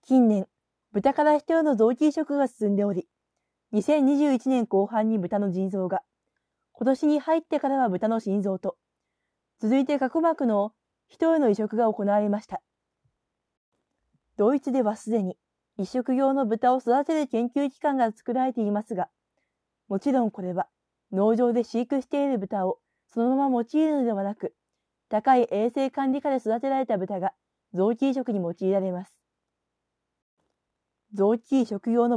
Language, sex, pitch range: Japanese, female, 200-270 Hz